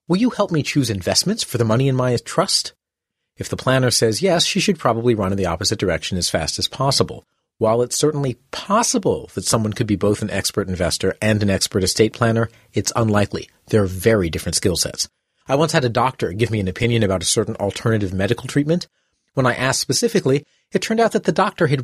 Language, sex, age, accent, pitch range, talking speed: English, male, 40-59, American, 100-140 Hz, 220 wpm